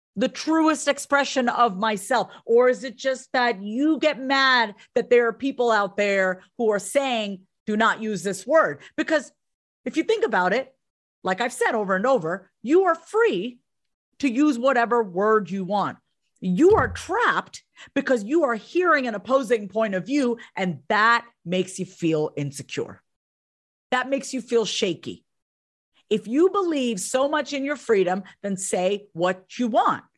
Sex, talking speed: female, 165 wpm